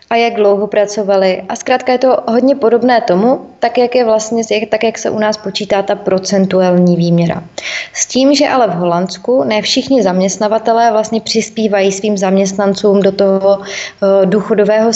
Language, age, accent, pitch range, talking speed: Czech, 20-39, native, 200-230 Hz, 165 wpm